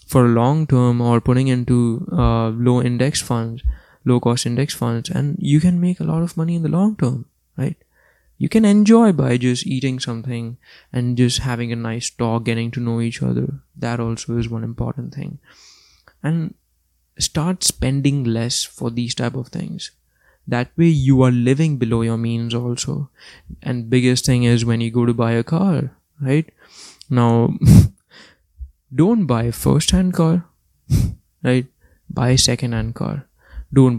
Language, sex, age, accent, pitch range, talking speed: English, male, 20-39, Indian, 115-140 Hz, 165 wpm